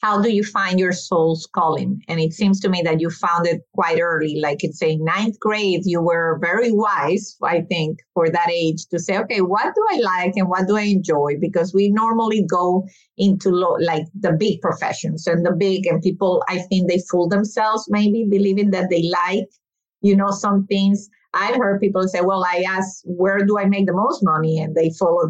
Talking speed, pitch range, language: 210 wpm, 170-205 Hz, English